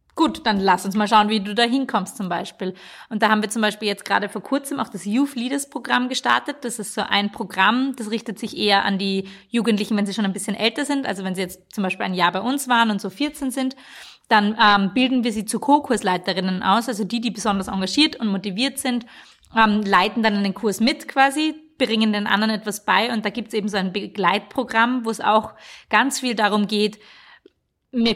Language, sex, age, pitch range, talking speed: German, female, 30-49, 195-225 Hz, 225 wpm